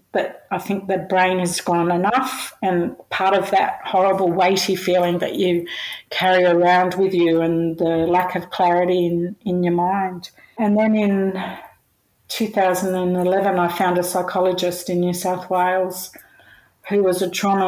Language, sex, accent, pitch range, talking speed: English, female, Australian, 175-190 Hz, 165 wpm